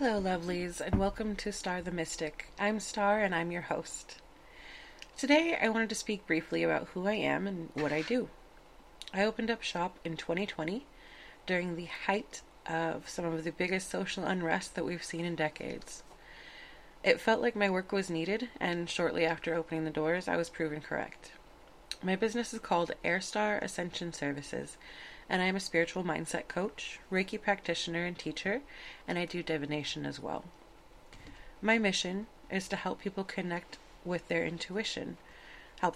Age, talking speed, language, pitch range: 30-49, 170 wpm, English, 160-200 Hz